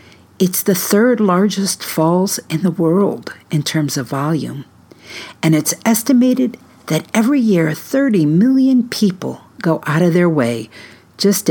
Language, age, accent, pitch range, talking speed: English, 50-69, American, 145-200 Hz, 140 wpm